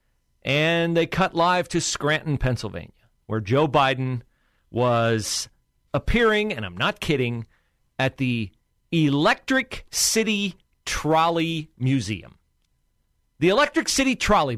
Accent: American